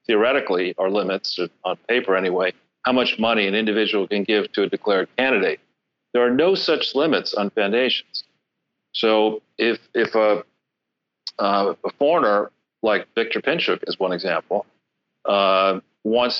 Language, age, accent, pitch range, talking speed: English, 40-59, American, 105-120 Hz, 145 wpm